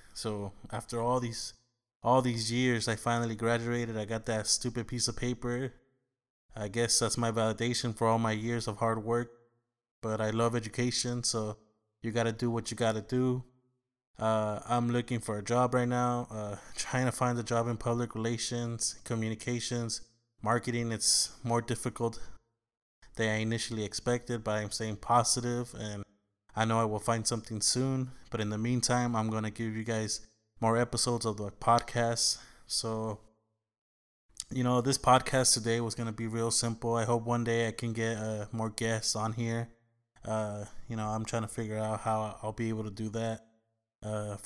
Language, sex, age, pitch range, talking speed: English, male, 20-39, 110-120 Hz, 185 wpm